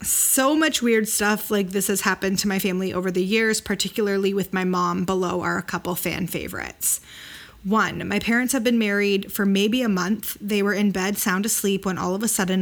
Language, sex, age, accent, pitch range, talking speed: English, female, 20-39, American, 185-215 Hz, 215 wpm